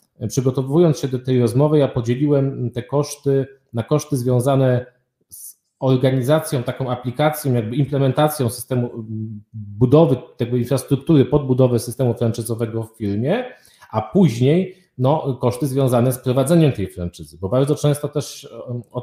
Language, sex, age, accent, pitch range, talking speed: Polish, male, 40-59, native, 115-135 Hz, 130 wpm